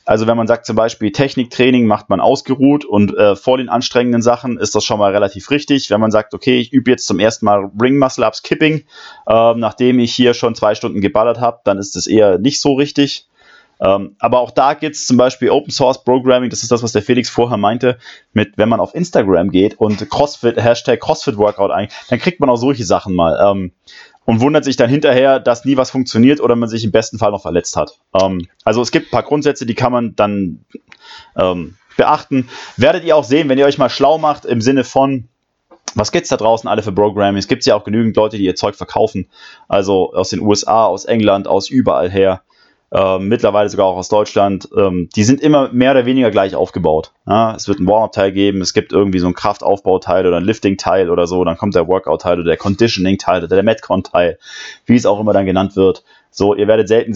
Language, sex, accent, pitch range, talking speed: German, male, German, 100-125 Hz, 225 wpm